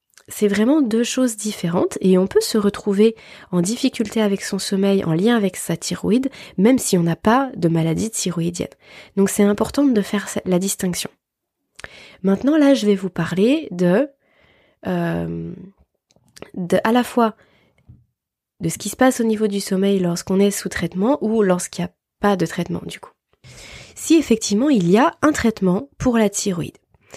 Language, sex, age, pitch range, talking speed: French, female, 20-39, 185-230 Hz, 170 wpm